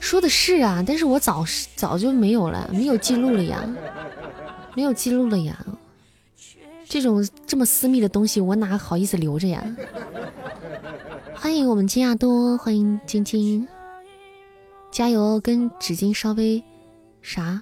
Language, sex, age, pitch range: Chinese, female, 20-39, 185-235 Hz